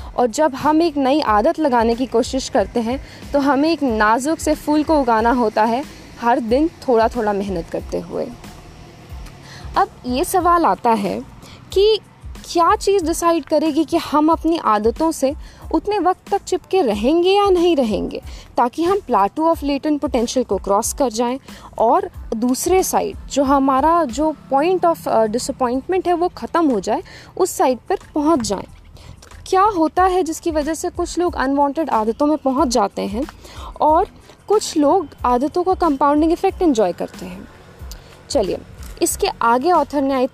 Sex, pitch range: female, 245-335 Hz